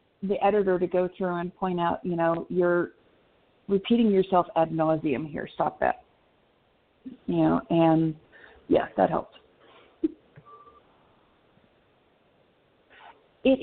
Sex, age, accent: female, 40-59, American